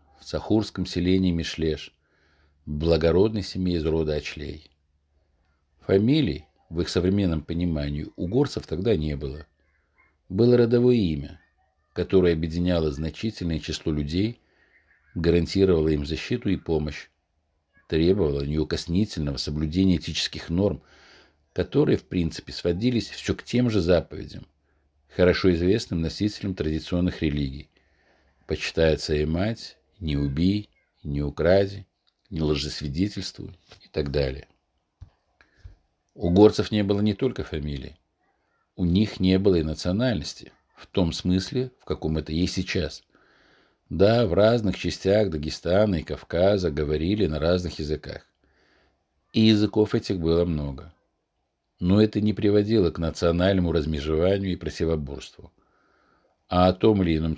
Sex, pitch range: male, 75-95 Hz